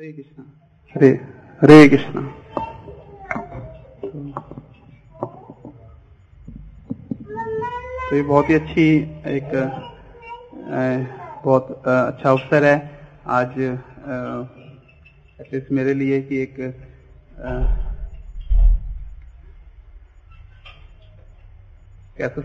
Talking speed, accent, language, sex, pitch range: 55 wpm, native, Hindi, male, 95-140 Hz